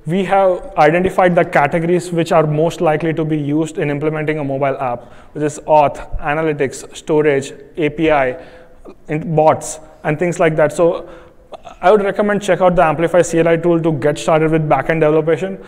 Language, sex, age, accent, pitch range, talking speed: English, male, 30-49, Indian, 150-175 Hz, 170 wpm